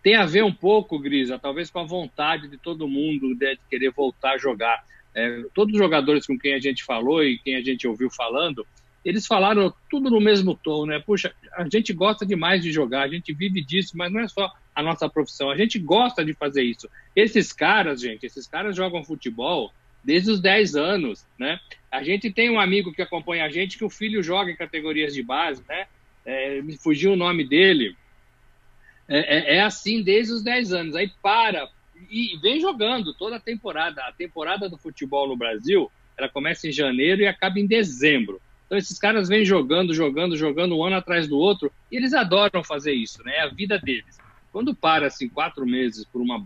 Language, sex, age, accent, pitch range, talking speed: Portuguese, male, 60-79, Brazilian, 140-205 Hz, 205 wpm